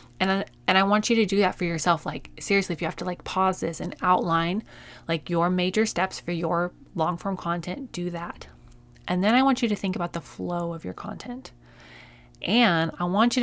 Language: English